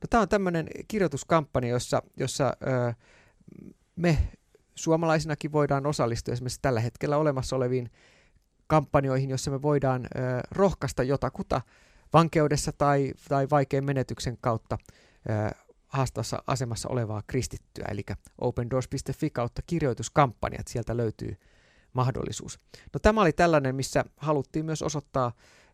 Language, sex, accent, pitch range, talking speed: Finnish, male, native, 115-150 Hz, 115 wpm